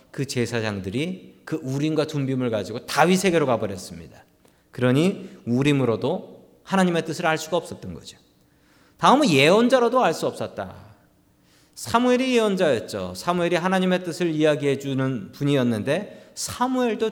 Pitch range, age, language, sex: 140-235 Hz, 40-59, Korean, male